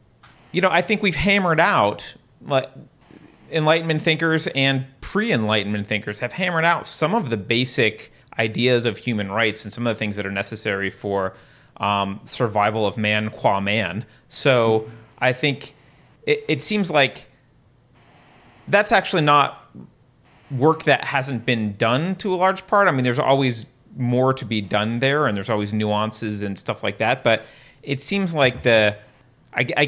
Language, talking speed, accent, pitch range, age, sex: English, 165 wpm, American, 115-150 Hz, 30-49, male